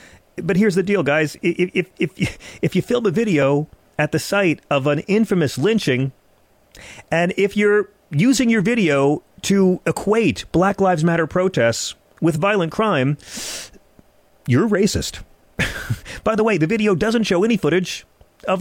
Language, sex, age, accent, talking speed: English, male, 40-59, American, 145 wpm